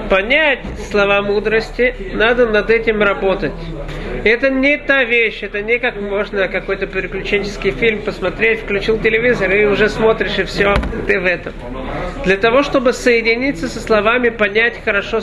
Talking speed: 145 wpm